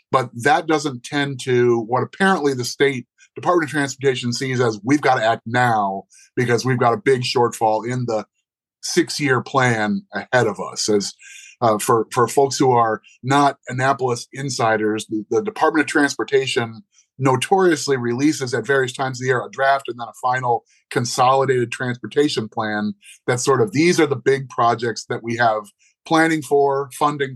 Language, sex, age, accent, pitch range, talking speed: English, male, 30-49, American, 120-145 Hz, 170 wpm